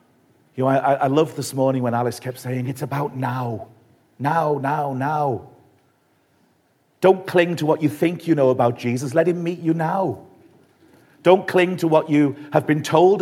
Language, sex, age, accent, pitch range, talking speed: English, male, 50-69, British, 125-155 Hz, 180 wpm